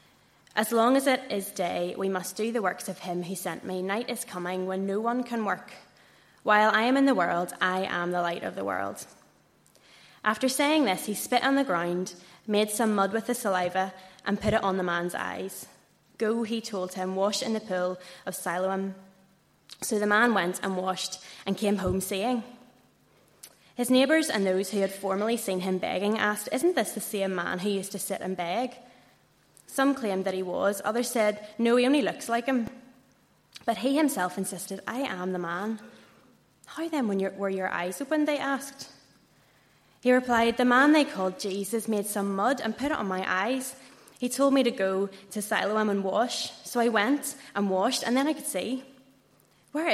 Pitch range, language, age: 190-250 Hz, English, 10-29